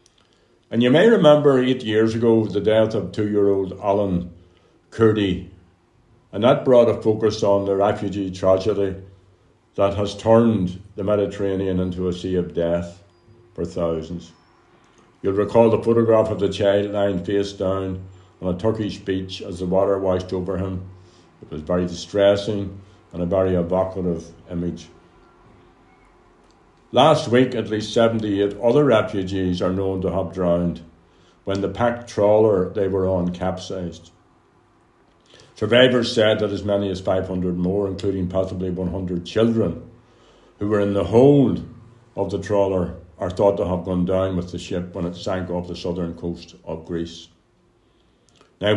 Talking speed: 150 wpm